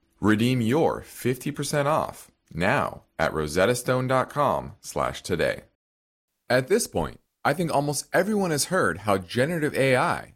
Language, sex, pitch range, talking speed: English, male, 95-140 Hz, 120 wpm